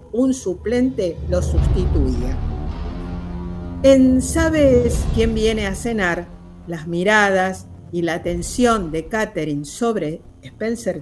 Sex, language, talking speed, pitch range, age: female, Spanish, 105 wpm, 170-225 Hz, 50-69